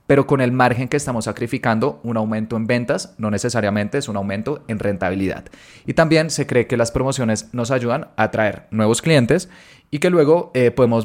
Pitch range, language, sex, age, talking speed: 110-130 Hz, Spanish, male, 20-39, 195 wpm